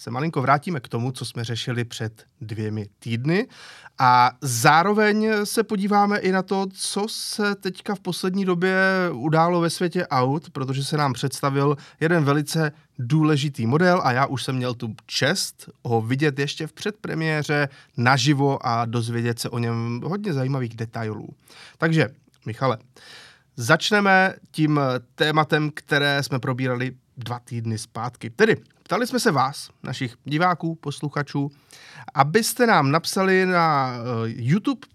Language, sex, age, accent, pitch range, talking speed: Czech, male, 30-49, native, 125-180 Hz, 140 wpm